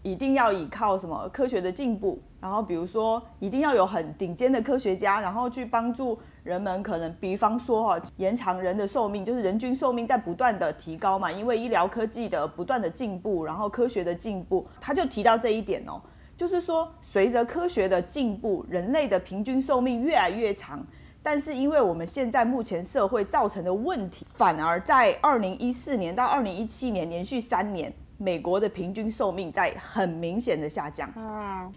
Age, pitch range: 30-49, 195-275 Hz